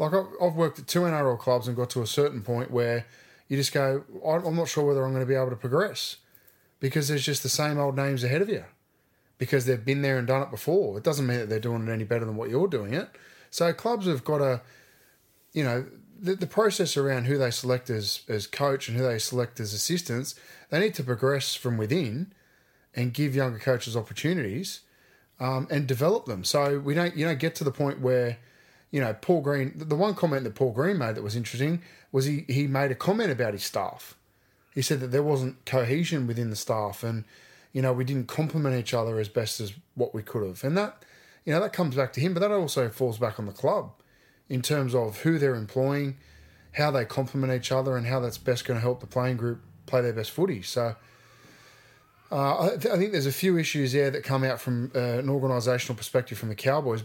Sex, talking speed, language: male, 230 wpm, English